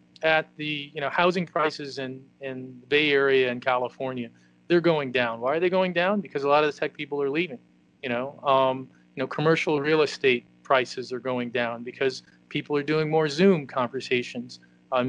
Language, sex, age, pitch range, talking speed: English, male, 40-59, 125-160 Hz, 200 wpm